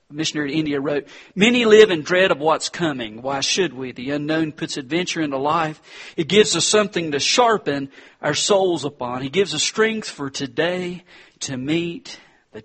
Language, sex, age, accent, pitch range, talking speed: English, male, 40-59, American, 145-205 Hz, 180 wpm